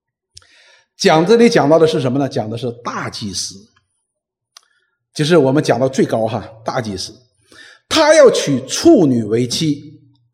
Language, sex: Chinese, male